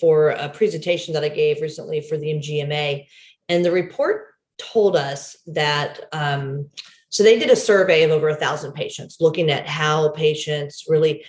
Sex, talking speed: female, 170 wpm